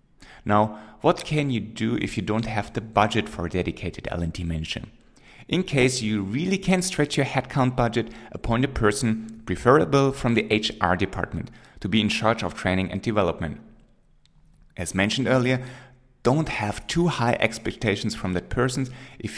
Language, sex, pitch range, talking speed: English, male, 100-125 Hz, 165 wpm